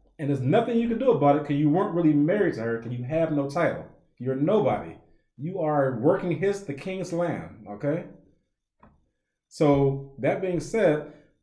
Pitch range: 130-175 Hz